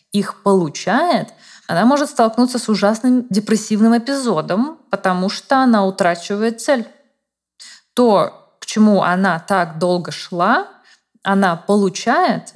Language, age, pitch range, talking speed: Russian, 20-39, 190-225 Hz, 110 wpm